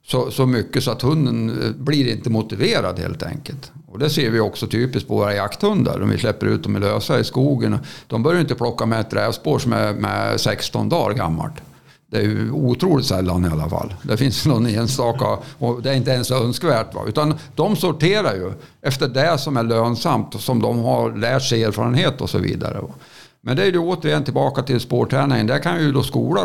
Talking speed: 210 wpm